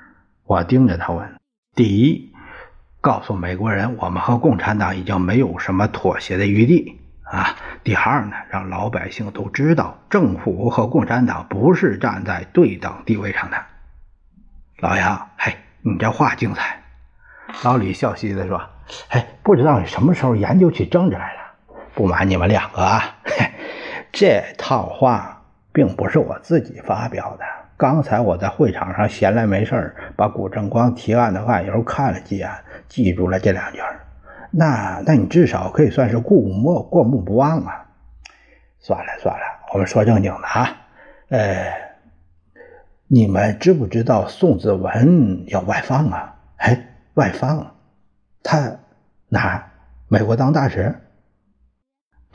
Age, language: 50-69, Chinese